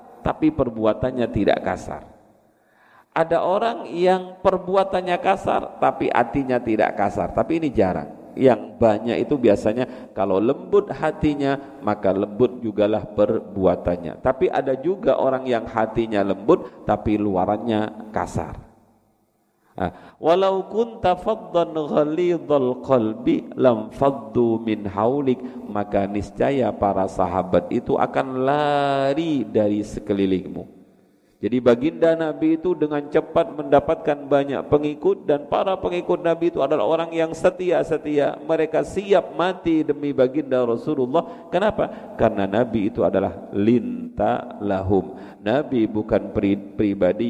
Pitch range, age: 105-160 Hz, 50-69